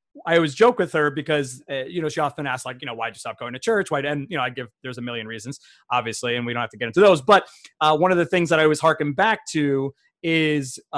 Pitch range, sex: 130-165 Hz, male